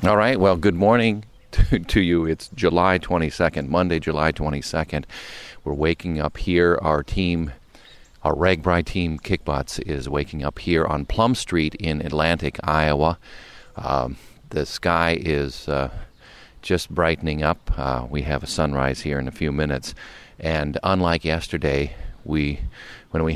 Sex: male